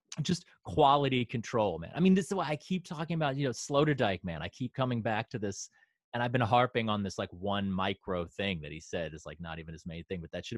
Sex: male